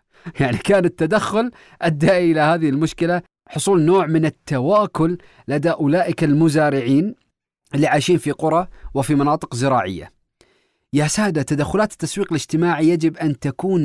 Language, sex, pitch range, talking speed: Arabic, male, 140-185 Hz, 125 wpm